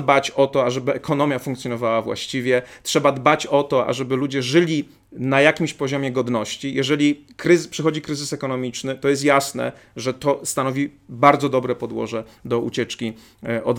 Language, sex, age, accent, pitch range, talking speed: Polish, male, 40-59, native, 125-155 Hz, 150 wpm